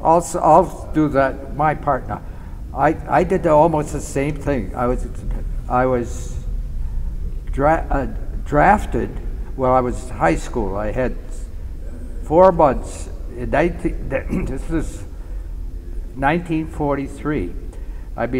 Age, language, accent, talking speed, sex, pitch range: 60-79, English, American, 115 wpm, male, 105-135 Hz